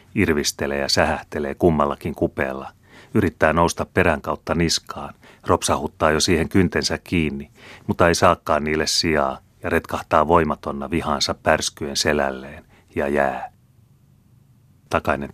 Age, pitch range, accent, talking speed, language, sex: 30-49, 70-90 Hz, native, 115 wpm, Finnish, male